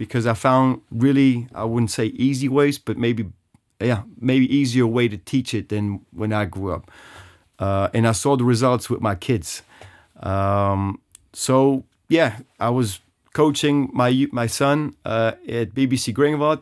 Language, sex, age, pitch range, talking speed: English, male, 30-49, 105-125 Hz, 165 wpm